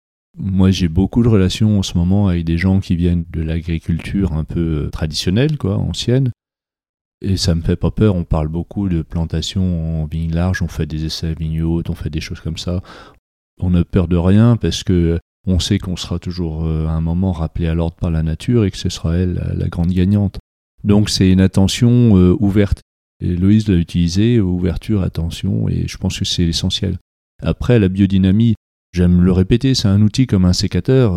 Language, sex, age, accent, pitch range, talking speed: French, male, 40-59, French, 85-100 Hz, 200 wpm